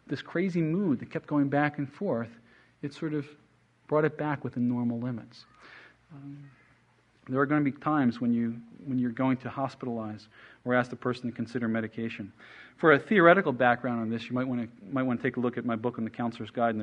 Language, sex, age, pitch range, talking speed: English, male, 40-59, 120-155 Hz, 220 wpm